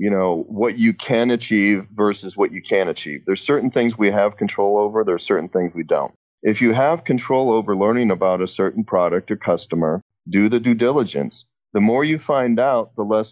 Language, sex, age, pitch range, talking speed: English, male, 30-49, 100-125 Hz, 210 wpm